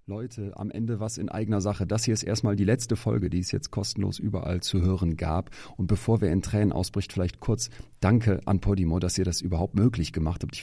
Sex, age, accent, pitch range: male, 40-59, German, 85-105 Hz